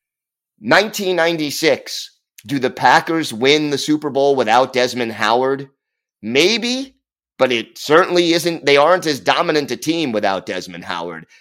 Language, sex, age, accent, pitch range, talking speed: English, male, 30-49, American, 115-155 Hz, 130 wpm